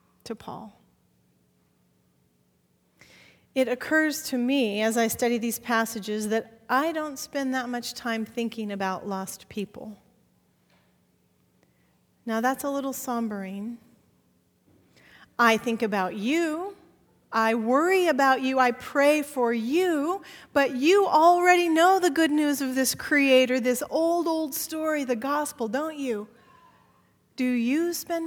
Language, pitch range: English, 230-310 Hz